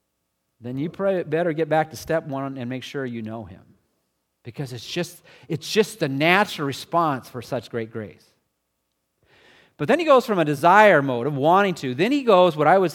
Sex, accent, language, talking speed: male, American, English, 200 wpm